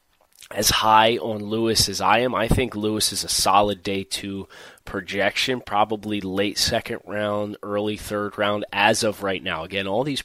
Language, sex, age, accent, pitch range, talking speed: English, male, 30-49, American, 95-120 Hz, 175 wpm